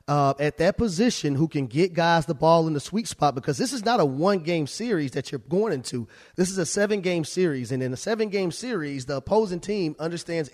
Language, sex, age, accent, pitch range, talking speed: English, male, 30-49, American, 145-195 Hz, 220 wpm